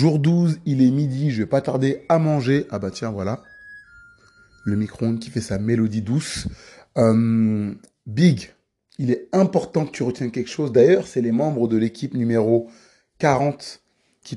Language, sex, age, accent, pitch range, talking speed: French, male, 30-49, French, 115-145 Hz, 170 wpm